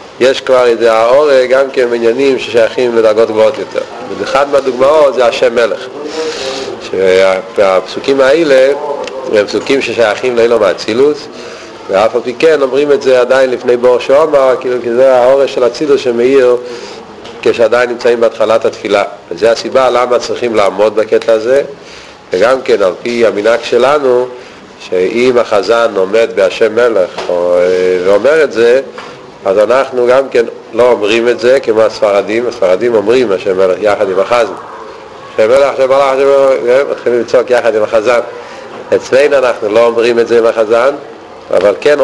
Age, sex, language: 40-59, male, Hebrew